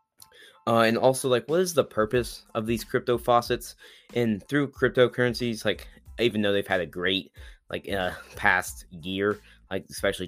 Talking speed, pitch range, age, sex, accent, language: 165 wpm, 90-110 Hz, 10-29, male, American, English